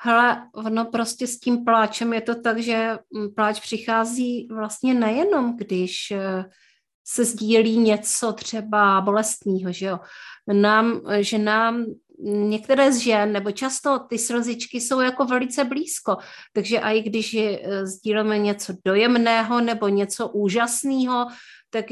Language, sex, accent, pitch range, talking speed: Czech, female, native, 205-250 Hz, 125 wpm